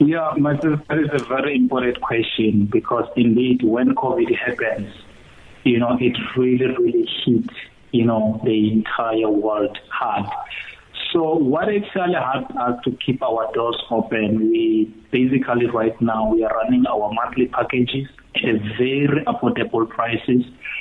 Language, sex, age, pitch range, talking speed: English, male, 30-49, 115-135 Hz, 140 wpm